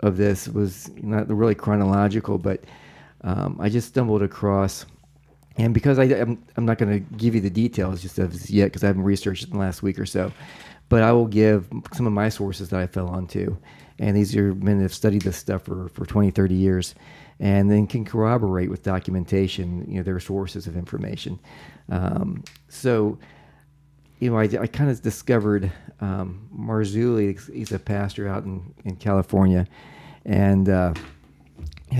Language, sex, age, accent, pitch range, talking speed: English, male, 40-59, American, 95-110 Hz, 180 wpm